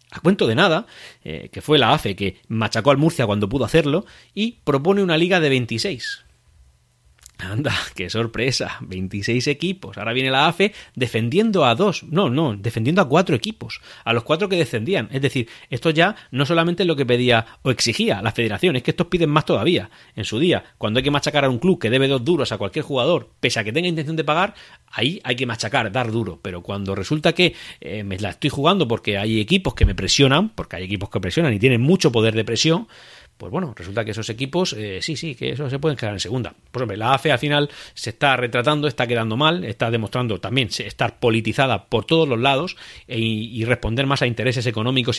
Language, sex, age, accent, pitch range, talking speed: English, male, 40-59, Spanish, 105-145 Hz, 220 wpm